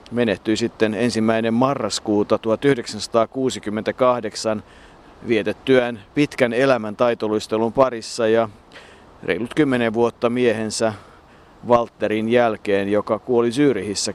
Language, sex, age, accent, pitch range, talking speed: Finnish, male, 50-69, native, 110-125 Hz, 85 wpm